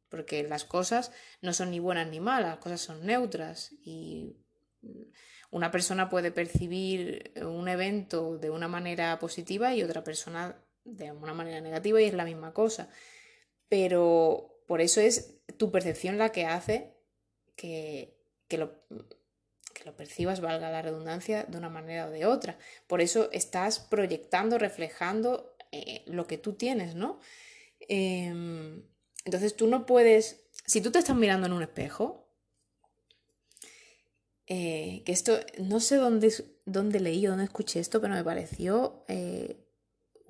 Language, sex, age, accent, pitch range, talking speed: Spanish, female, 20-39, Spanish, 165-220 Hz, 145 wpm